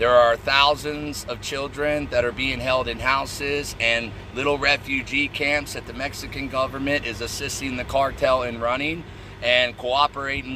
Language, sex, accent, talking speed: English, male, American, 155 wpm